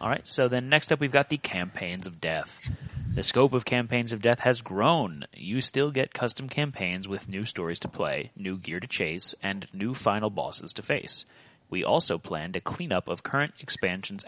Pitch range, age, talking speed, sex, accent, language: 95-125 Hz, 30-49, 200 wpm, male, American, English